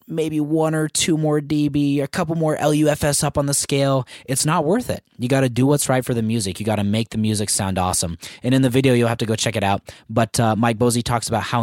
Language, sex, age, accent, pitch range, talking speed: English, male, 20-39, American, 100-130 Hz, 275 wpm